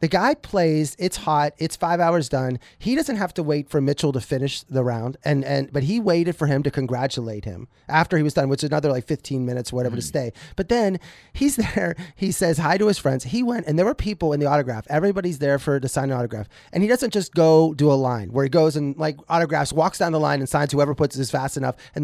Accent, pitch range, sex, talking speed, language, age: American, 140-185 Hz, male, 260 wpm, English, 30-49